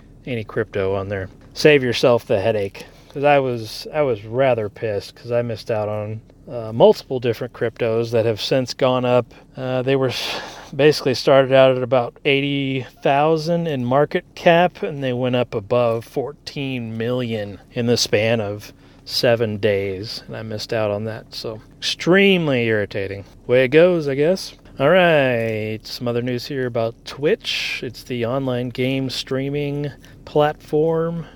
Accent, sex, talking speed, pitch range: American, male, 155 wpm, 115-145 Hz